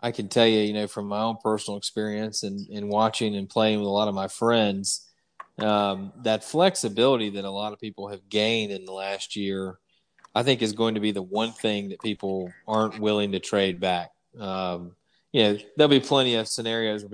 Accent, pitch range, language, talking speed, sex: American, 100-115 Hz, English, 215 wpm, male